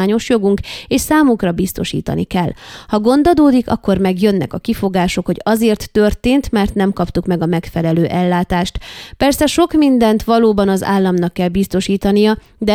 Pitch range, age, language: 185-225 Hz, 20-39, Hungarian